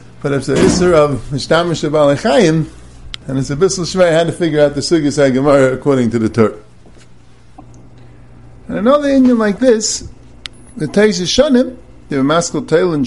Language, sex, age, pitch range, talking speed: English, male, 50-69, 125-200 Hz, 155 wpm